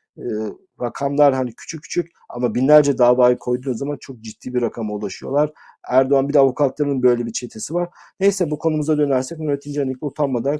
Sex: male